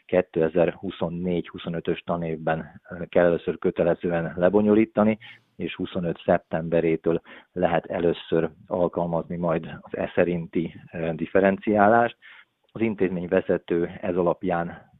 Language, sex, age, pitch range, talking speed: Hungarian, male, 40-59, 85-100 Hz, 80 wpm